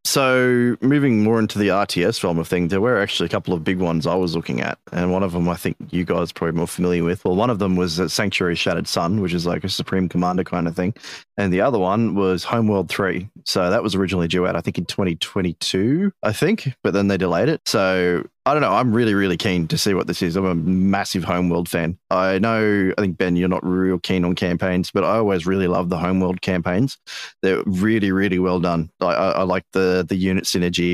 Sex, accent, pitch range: male, Australian, 90-105 Hz